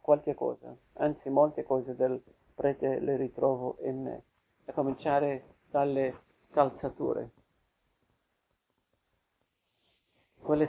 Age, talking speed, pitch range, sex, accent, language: 50-69, 90 wpm, 130-145 Hz, male, native, Italian